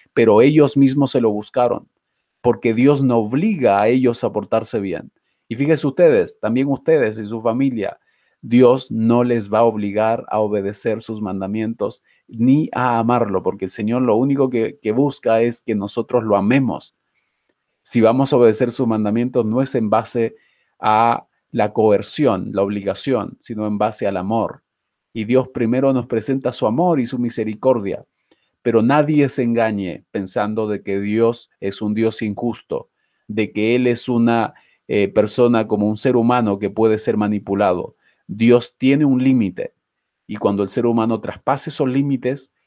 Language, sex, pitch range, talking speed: Spanish, male, 105-125 Hz, 165 wpm